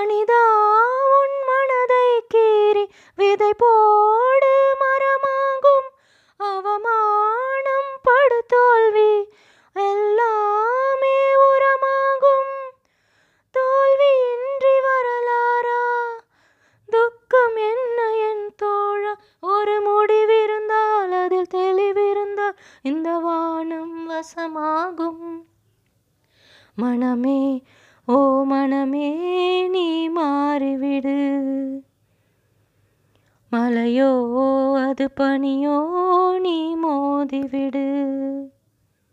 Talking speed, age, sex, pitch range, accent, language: 45 wpm, 20-39, female, 270-410 Hz, native, Tamil